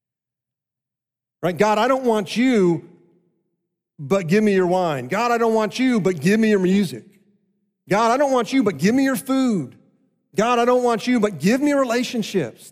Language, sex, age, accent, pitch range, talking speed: English, male, 40-59, American, 140-205 Hz, 185 wpm